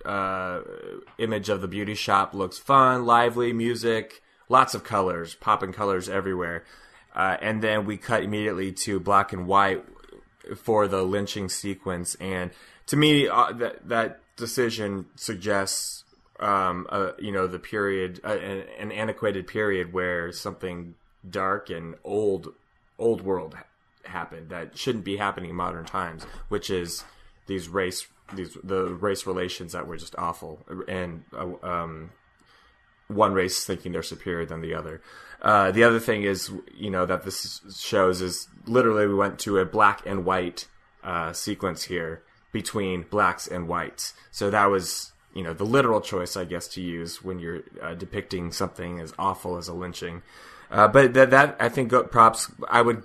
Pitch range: 90-105 Hz